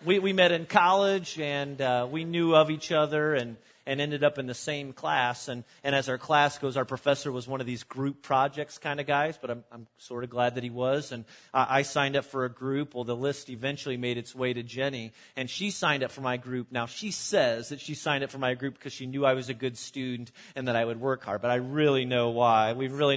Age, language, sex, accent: 30-49, English, male, American